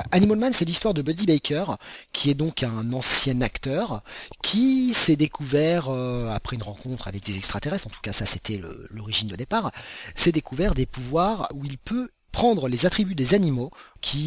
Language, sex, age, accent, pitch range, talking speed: French, male, 30-49, French, 115-160 Hz, 190 wpm